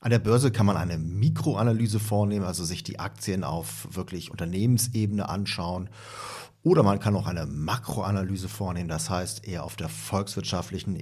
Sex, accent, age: male, German, 50-69